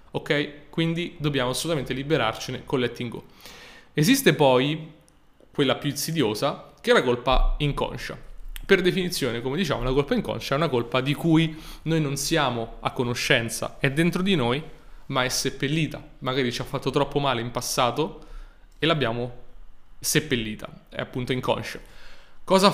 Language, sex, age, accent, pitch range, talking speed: Italian, male, 20-39, native, 125-155 Hz, 150 wpm